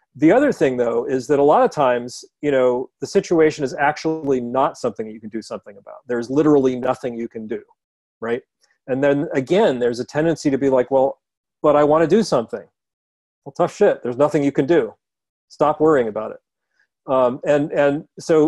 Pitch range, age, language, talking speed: 120-155 Hz, 40-59, English, 205 wpm